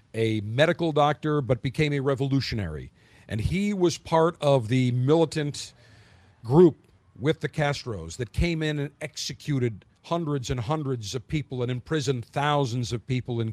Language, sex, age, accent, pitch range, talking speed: English, male, 50-69, American, 115-155 Hz, 150 wpm